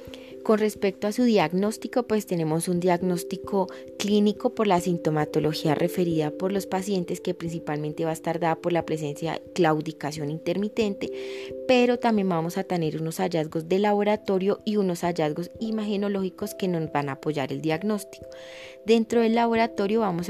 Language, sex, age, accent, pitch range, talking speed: Spanish, female, 20-39, Colombian, 160-195 Hz, 155 wpm